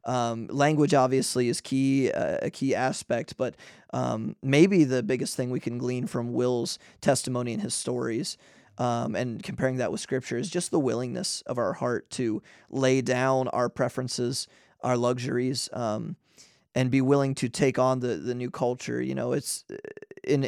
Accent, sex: American, male